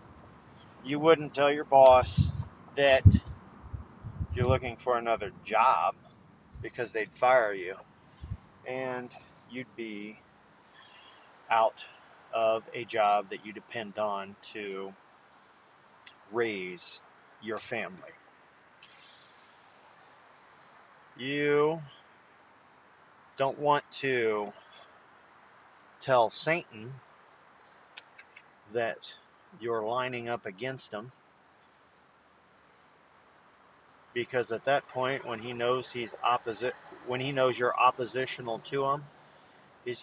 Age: 40-59